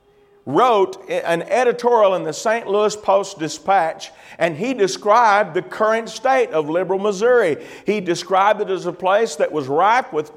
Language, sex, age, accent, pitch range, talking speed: English, male, 50-69, American, 165-220 Hz, 155 wpm